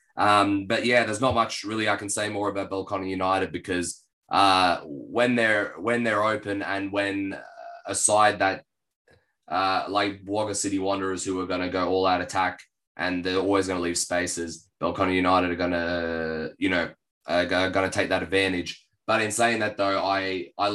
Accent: Australian